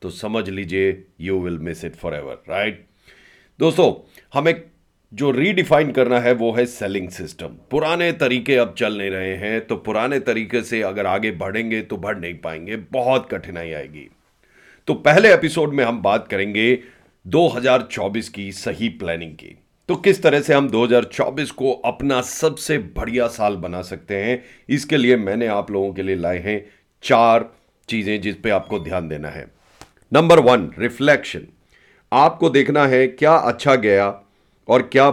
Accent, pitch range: native, 100-135 Hz